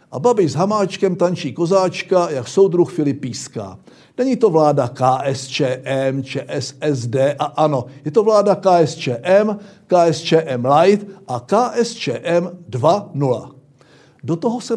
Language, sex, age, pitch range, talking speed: Czech, male, 60-79, 135-195 Hz, 115 wpm